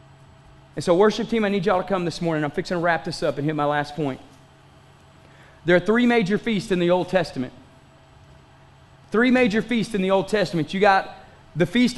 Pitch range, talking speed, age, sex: 175-255 Hz, 210 wpm, 30-49, male